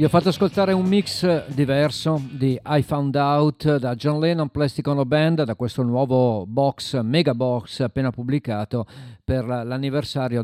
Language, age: Italian, 50-69